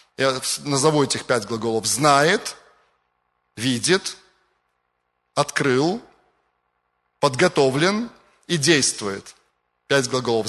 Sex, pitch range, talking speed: male, 130-175 Hz, 75 wpm